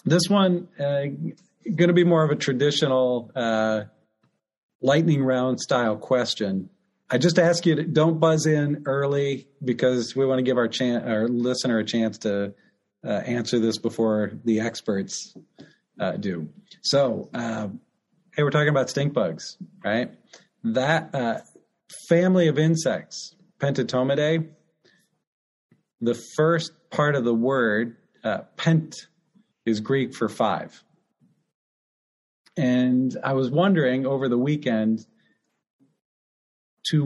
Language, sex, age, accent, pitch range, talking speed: English, male, 40-59, American, 120-170 Hz, 125 wpm